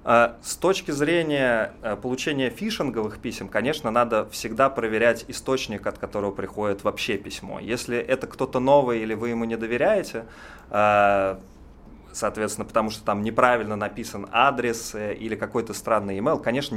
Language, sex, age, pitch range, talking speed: Russian, male, 30-49, 100-120 Hz, 130 wpm